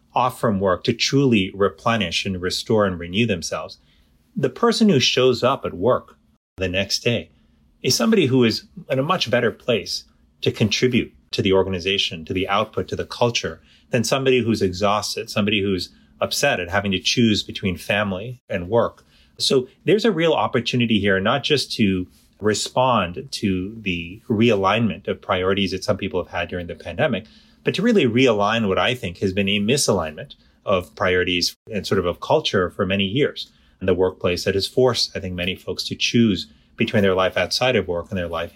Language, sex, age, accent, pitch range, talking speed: English, male, 30-49, American, 95-115 Hz, 190 wpm